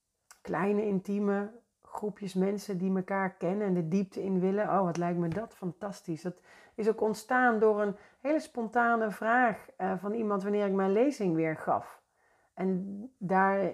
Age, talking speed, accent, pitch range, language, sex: 40-59, 160 wpm, Dutch, 170-215 Hz, Dutch, female